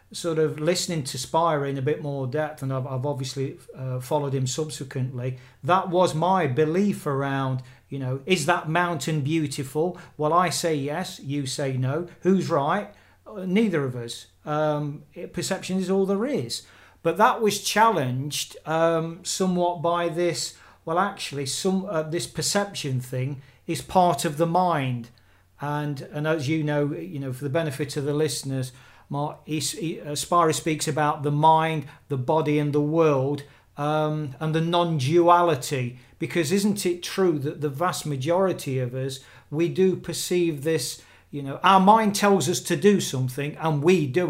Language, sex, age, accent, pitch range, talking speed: English, male, 40-59, British, 140-175 Hz, 165 wpm